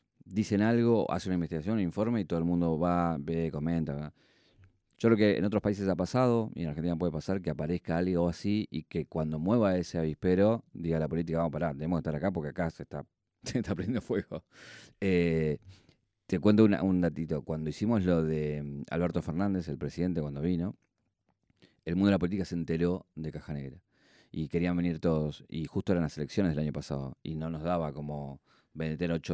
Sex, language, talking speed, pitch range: male, Spanish, 200 wpm, 75-90 Hz